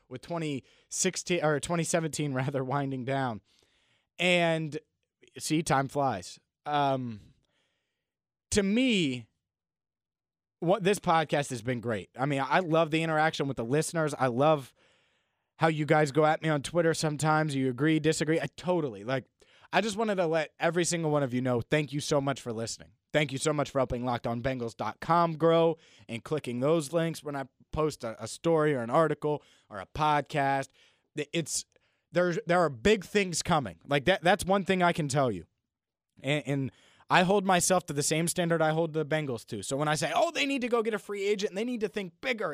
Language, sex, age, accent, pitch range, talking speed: English, male, 30-49, American, 130-170 Hz, 190 wpm